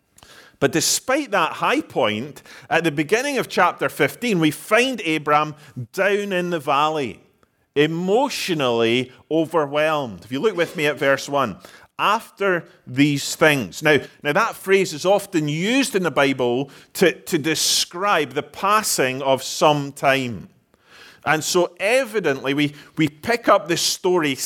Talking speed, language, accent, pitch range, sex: 140 wpm, English, British, 135-185 Hz, male